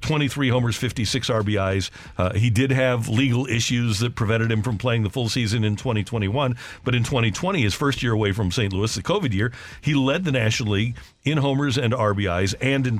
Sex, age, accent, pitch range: male, 50-69, American, 105-130 Hz